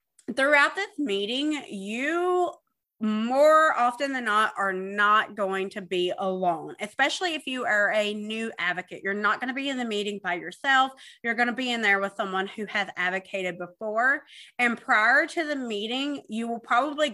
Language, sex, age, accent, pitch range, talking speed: English, female, 30-49, American, 195-260 Hz, 180 wpm